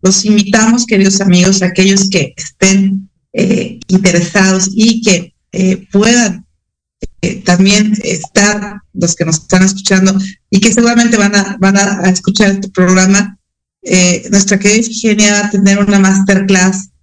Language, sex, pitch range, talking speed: Spanish, female, 185-215 Hz, 140 wpm